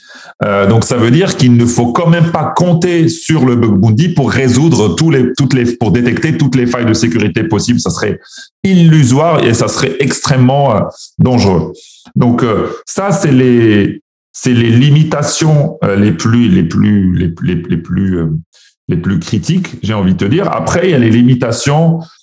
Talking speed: 190 wpm